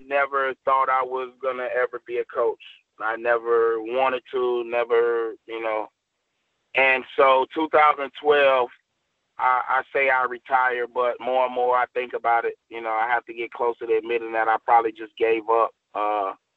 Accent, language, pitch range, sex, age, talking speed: American, English, 115-135 Hz, male, 20-39, 180 wpm